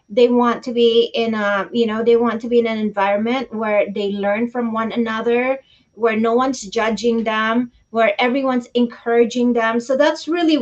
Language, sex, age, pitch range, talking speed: English, female, 30-49, 220-260 Hz, 185 wpm